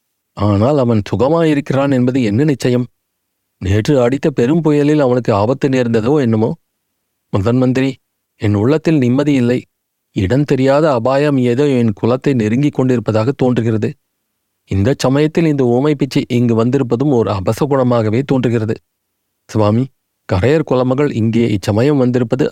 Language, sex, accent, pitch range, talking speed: Tamil, male, native, 110-135 Hz, 115 wpm